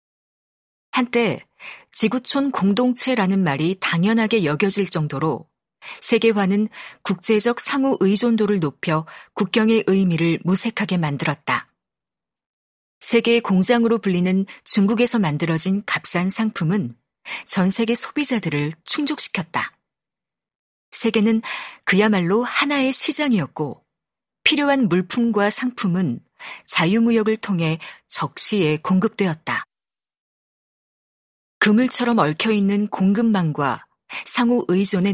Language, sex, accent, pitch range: Korean, female, native, 180-230 Hz